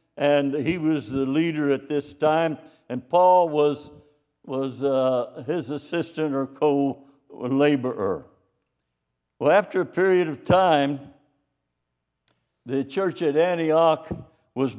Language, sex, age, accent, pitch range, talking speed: English, male, 60-79, American, 130-160 Hz, 115 wpm